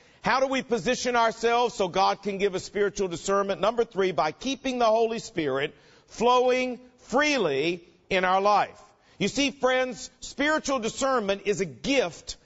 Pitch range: 195-245 Hz